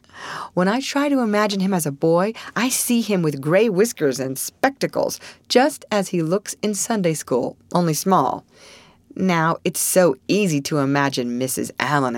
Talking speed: 170 wpm